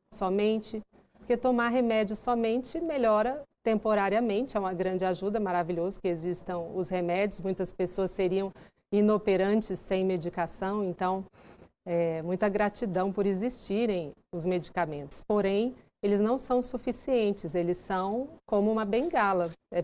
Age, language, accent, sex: 50-69, Portuguese, Brazilian, female